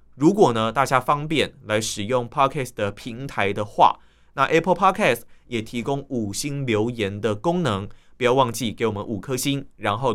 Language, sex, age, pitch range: Chinese, male, 20-39, 110-145 Hz